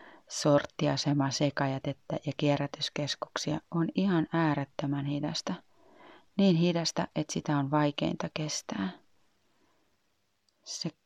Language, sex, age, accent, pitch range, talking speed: Finnish, female, 30-49, native, 145-170 Hz, 85 wpm